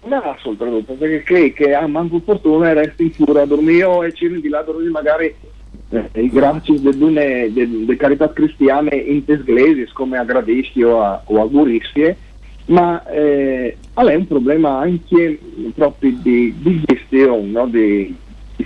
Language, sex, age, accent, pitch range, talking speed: Italian, male, 50-69, native, 120-165 Hz, 155 wpm